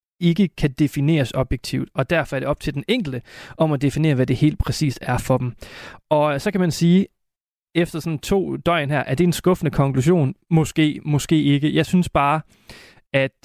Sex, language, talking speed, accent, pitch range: male, Danish, 200 wpm, native, 135-170 Hz